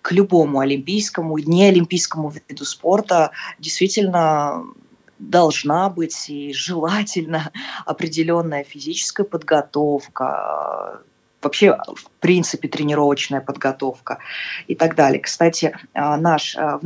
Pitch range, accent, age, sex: 150-180 Hz, native, 20-39, female